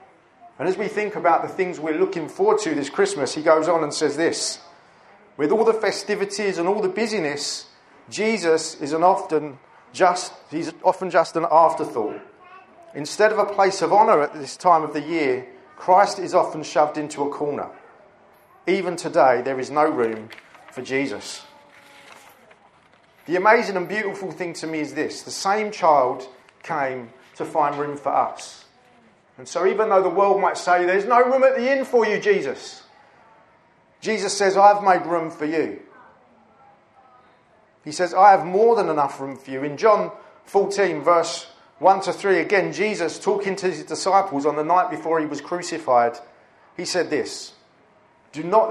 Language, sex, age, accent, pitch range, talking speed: English, male, 40-59, British, 150-210 Hz, 170 wpm